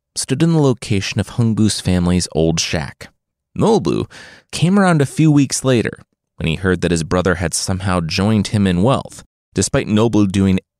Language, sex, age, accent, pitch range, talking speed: English, male, 30-49, American, 95-145 Hz, 180 wpm